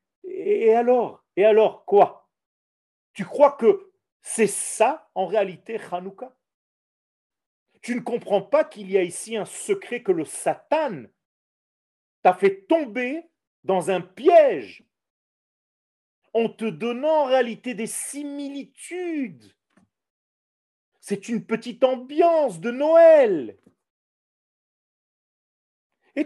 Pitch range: 185-290 Hz